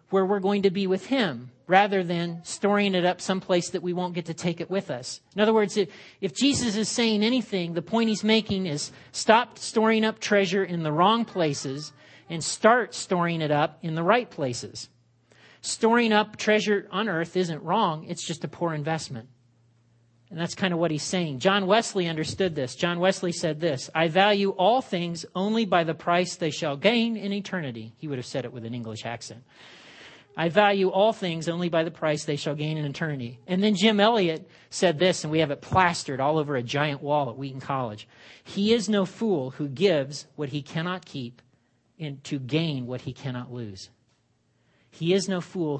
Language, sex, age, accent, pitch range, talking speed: English, male, 40-59, American, 135-195 Hz, 200 wpm